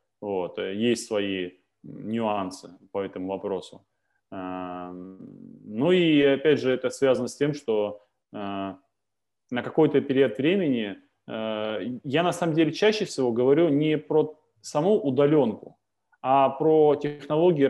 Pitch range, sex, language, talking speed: 110-140 Hz, male, Russian, 110 wpm